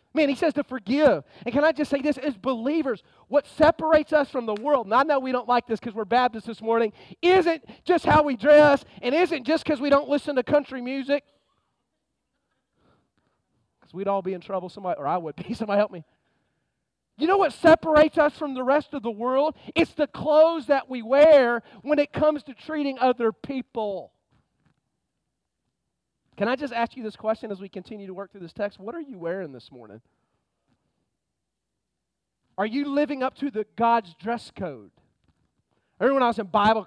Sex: male